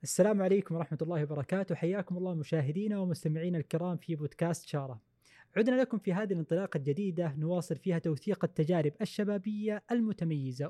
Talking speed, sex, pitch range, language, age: 140 wpm, male, 155-190 Hz, Arabic, 20-39